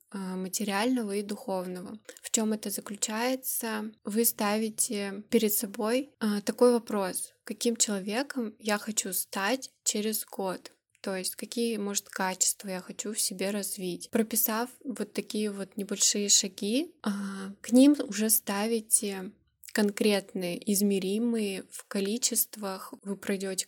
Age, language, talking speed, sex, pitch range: 20-39, Russian, 115 wpm, female, 200-230 Hz